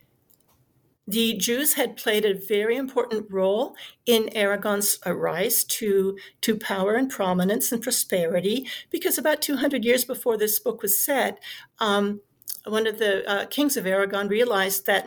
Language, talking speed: English, 150 wpm